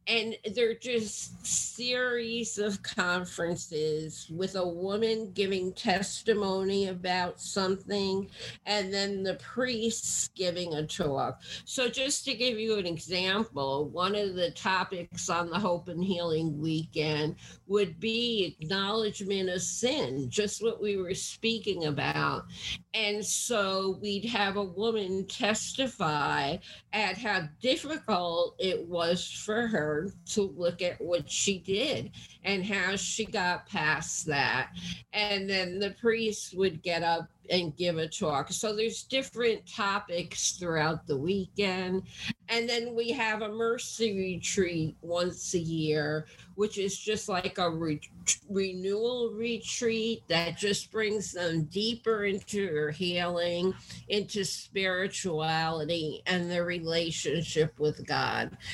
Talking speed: 125 wpm